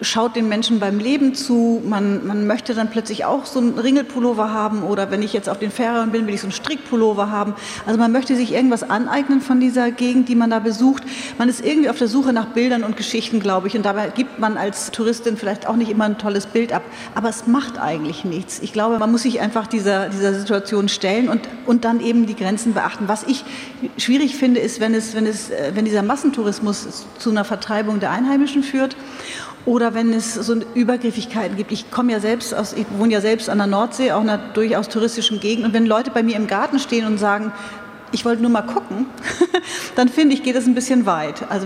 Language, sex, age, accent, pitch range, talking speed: German, female, 40-59, German, 205-245 Hz, 225 wpm